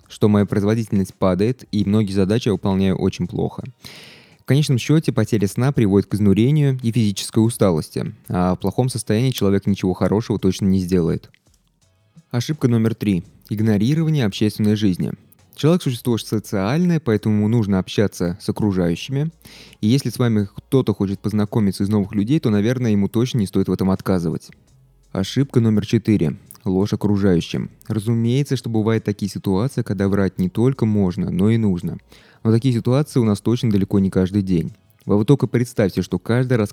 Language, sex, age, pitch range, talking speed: Russian, male, 20-39, 95-120 Hz, 165 wpm